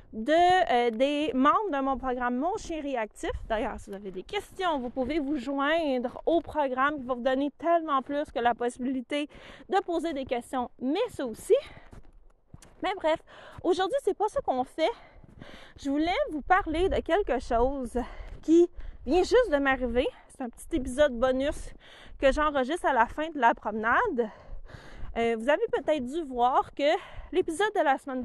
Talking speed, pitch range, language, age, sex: 170 wpm, 250-330 Hz, French, 30-49, female